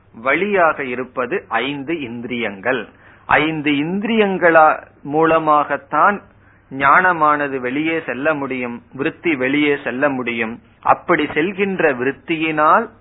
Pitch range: 120-155 Hz